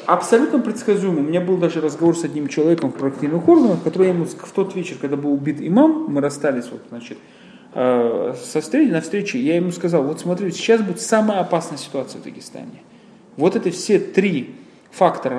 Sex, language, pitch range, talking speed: male, Russian, 150-220 Hz, 185 wpm